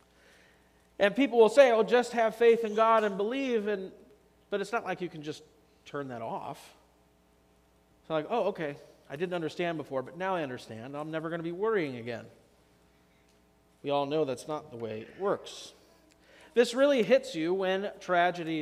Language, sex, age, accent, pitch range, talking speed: English, male, 40-59, American, 140-195 Hz, 180 wpm